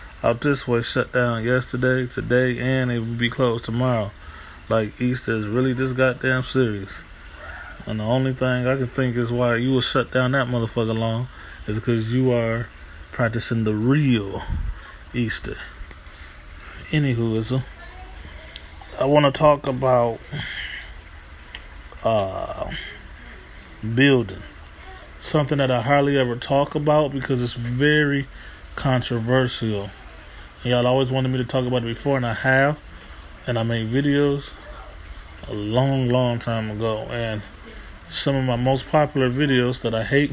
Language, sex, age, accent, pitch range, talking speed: English, male, 20-39, American, 105-135 Hz, 140 wpm